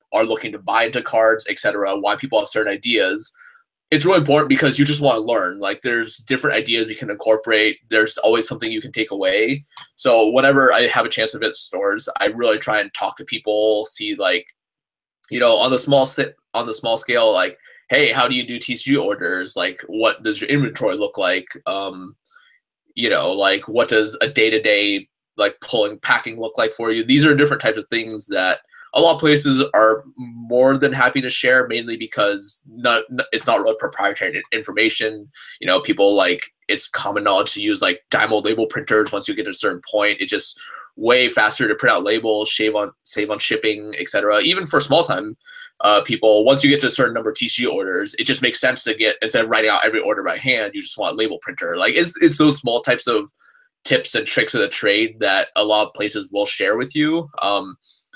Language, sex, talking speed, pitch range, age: English, male, 220 wpm, 110-145 Hz, 20-39